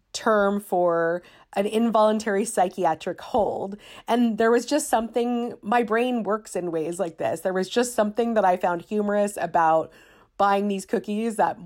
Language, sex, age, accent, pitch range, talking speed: English, female, 40-59, American, 185-220 Hz, 160 wpm